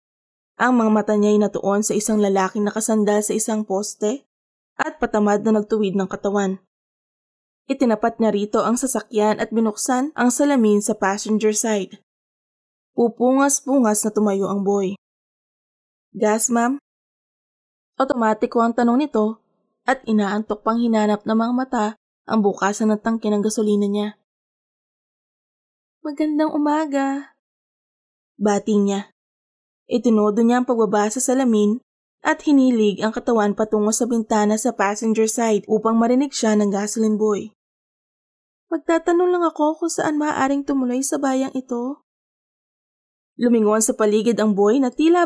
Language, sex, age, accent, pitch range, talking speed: Filipino, female, 20-39, native, 210-250 Hz, 130 wpm